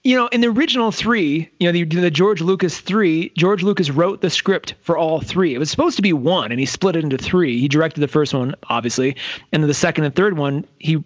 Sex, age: male, 30-49